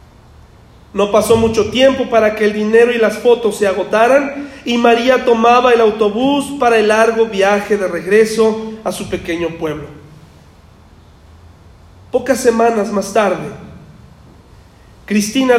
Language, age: Spanish, 40-59